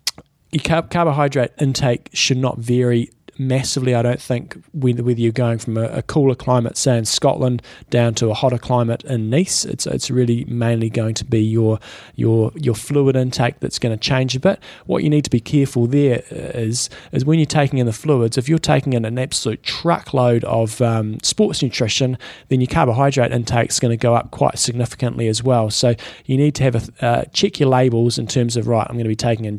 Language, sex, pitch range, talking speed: English, male, 115-135 Hz, 215 wpm